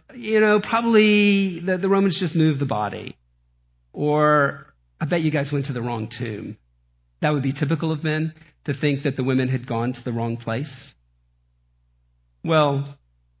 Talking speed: 170 wpm